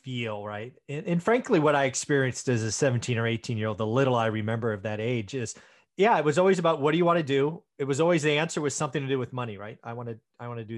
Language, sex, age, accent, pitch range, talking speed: English, male, 30-49, American, 115-150 Hz, 285 wpm